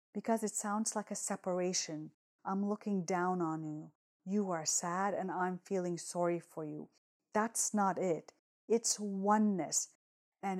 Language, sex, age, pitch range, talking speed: English, female, 30-49, 170-200 Hz, 145 wpm